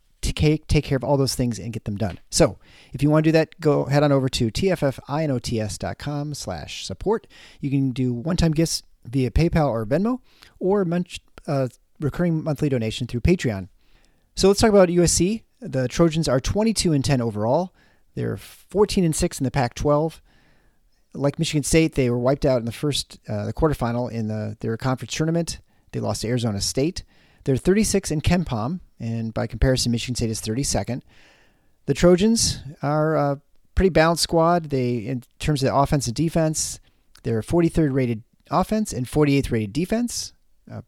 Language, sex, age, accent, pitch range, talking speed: English, male, 40-59, American, 120-160 Hz, 180 wpm